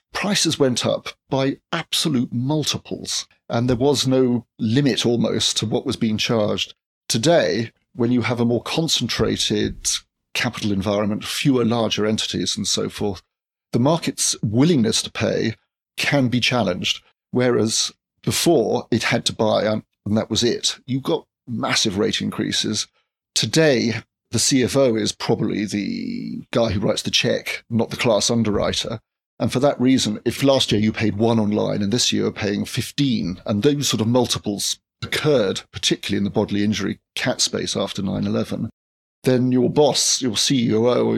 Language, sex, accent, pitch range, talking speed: English, male, British, 110-130 Hz, 155 wpm